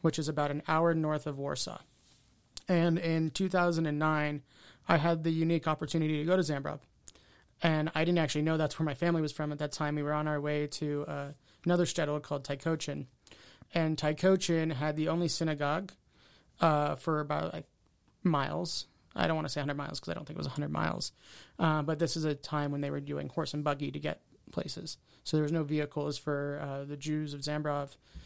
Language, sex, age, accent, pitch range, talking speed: English, male, 30-49, American, 145-165 Hz, 210 wpm